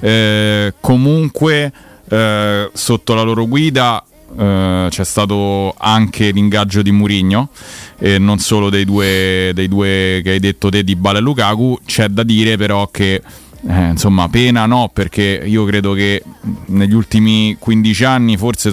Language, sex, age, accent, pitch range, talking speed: Italian, male, 30-49, native, 100-120 Hz, 155 wpm